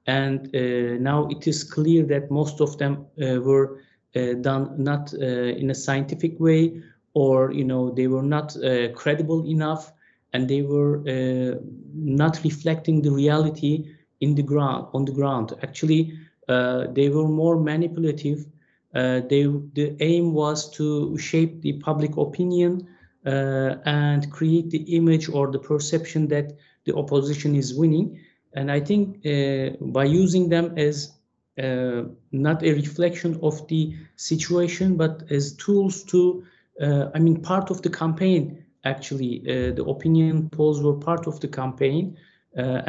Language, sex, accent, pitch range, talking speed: Turkish, male, native, 135-165 Hz, 155 wpm